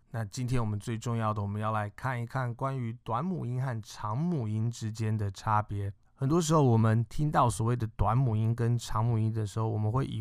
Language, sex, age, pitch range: Chinese, male, 20-39, 105-125 Hz